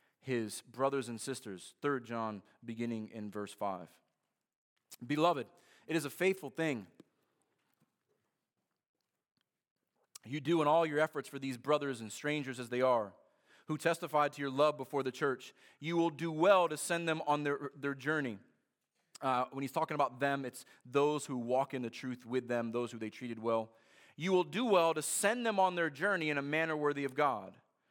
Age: 30-49